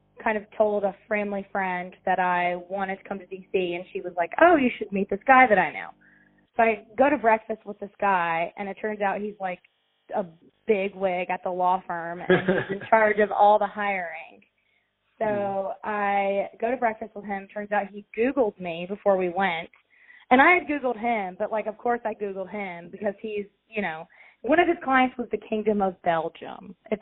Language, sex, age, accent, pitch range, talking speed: English, female, 20-39, American, 185-225 Hz, 215 wpm